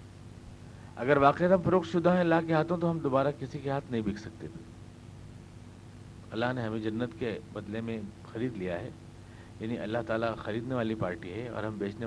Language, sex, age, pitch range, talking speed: Urdu, male, 50-69, 110-140 Hz, 195 wpm